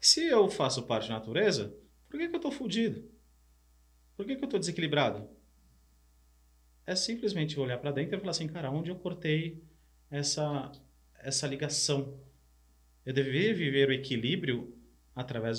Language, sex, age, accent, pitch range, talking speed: Portuguese, male, 30-49, Brazilian, 110-150 Hz, 150 wpm